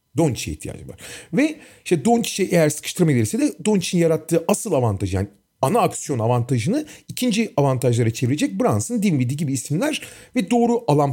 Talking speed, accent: 150 wpm, native